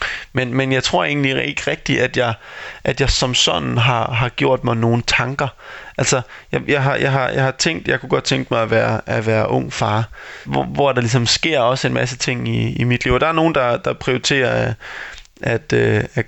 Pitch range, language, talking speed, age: 115-130 Hz, Danish, 225 wpm, 20-39